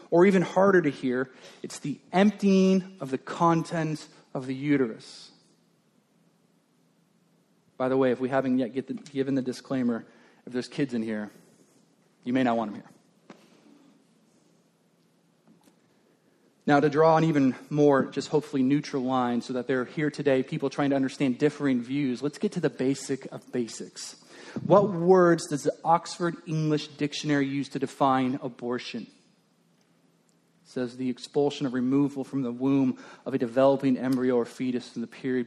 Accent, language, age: American, English, 30-49